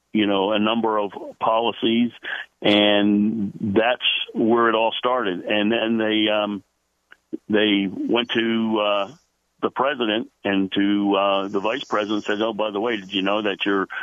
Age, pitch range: 50-69, 95-110 Hz